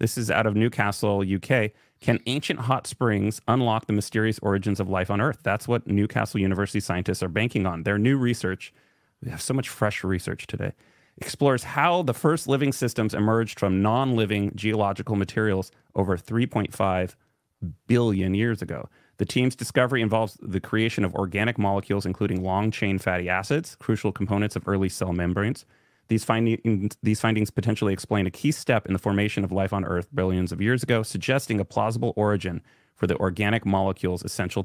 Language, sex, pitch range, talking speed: English, male, 95-115 Hz, 170 wpm